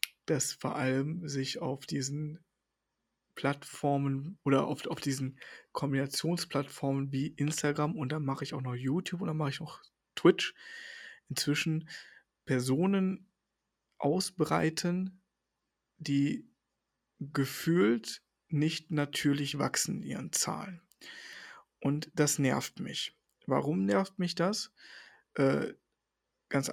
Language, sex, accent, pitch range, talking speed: German, male, German, 140-175 Hz, 100 wpm